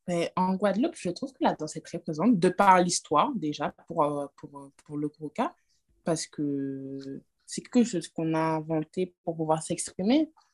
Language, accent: French, French